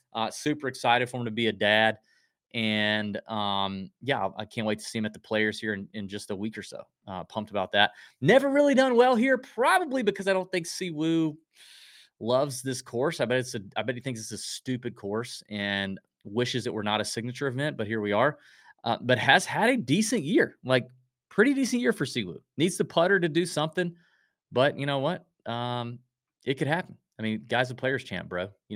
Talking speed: 220 wpm